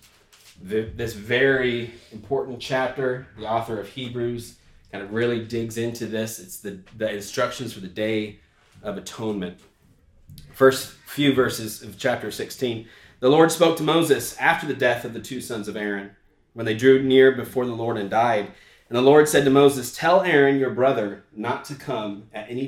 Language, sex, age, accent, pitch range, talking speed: English, male, 30-49, American, 105-130 Hz, 175 wpm